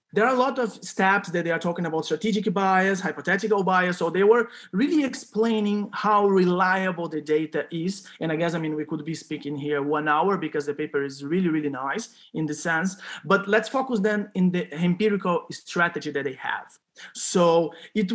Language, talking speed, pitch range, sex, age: English, 200 wpm, 165-210 Hz, male, 30-49